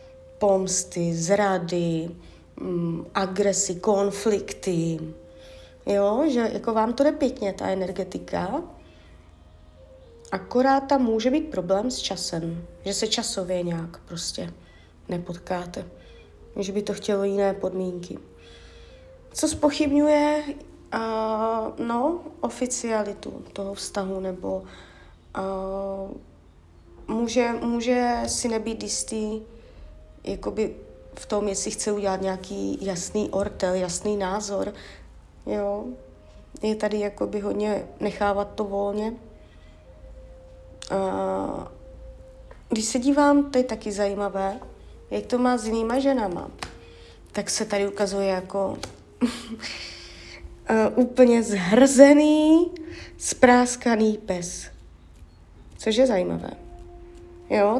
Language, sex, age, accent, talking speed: Czech, female, 30-49, native, 95 wpm